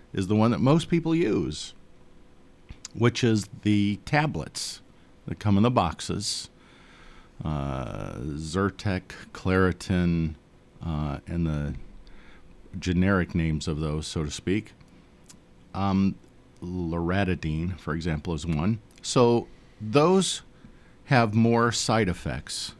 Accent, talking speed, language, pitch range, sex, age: American, 110 wpm, English, 85-115 Hz, male, 50-69